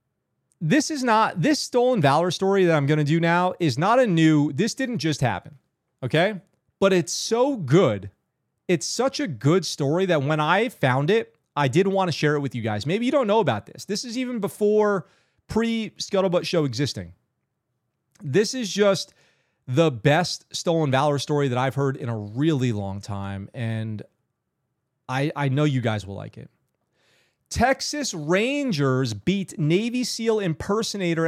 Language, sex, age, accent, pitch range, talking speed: English, male, 30-49, American, 140-190 Hz, 170 wpm